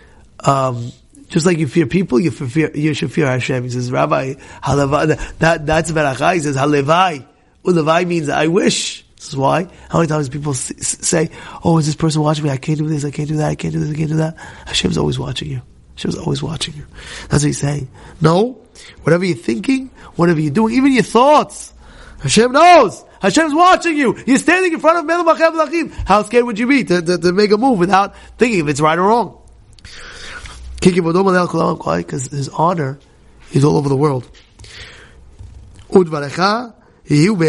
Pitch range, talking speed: 140-195 Hz, 195 wpm